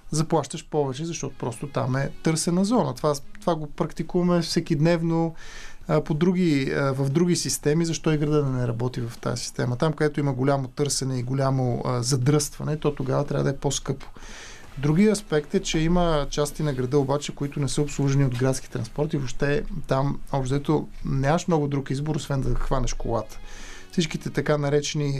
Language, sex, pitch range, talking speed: Bulgarian, male, 130-155 Hz, 180 wpm